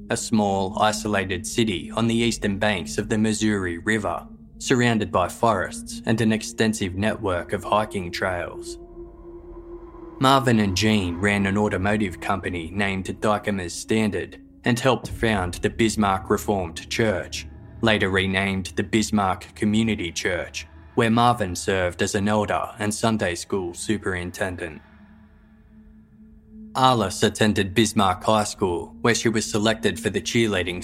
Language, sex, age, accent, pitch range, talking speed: English, male, 20-39, Australian, 95-115 Hz, 130 wpm